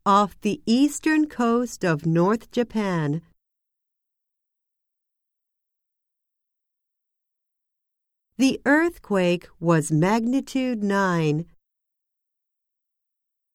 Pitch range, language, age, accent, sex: 175-255 Hz, Japanese, 50-69, American, female